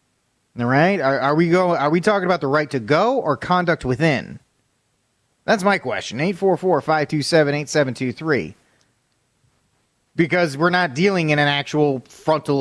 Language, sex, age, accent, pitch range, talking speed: English, male, 30-49, American, 130-185 Hz, 140 wpm